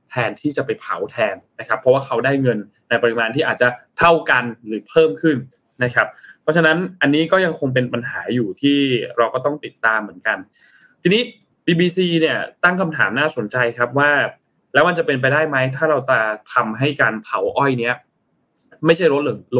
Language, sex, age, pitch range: Thai, male, 20-39, 120-160 Hz